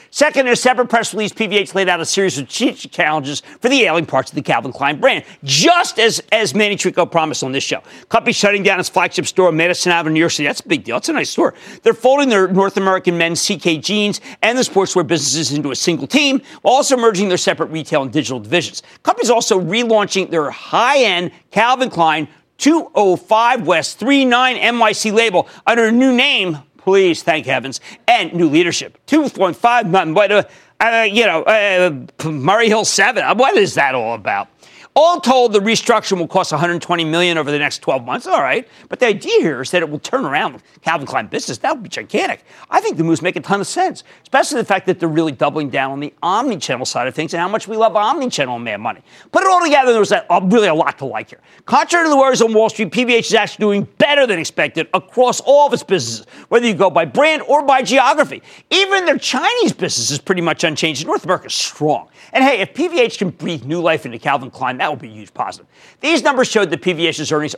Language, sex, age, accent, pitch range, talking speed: English, male, 50-69, American, 165-240 Hz, 220 wpm